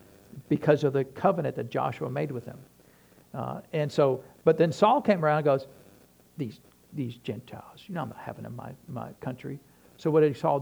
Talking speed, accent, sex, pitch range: 205 wpm, American, male, 120-165 Hz